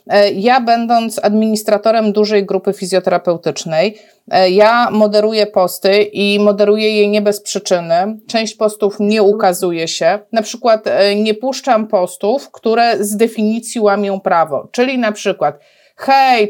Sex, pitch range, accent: female, 195-225 Hz, native